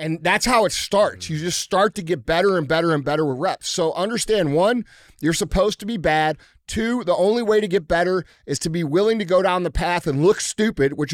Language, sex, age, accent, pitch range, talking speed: English, male, 30-49, American, 180-235 Hz, 240 wpm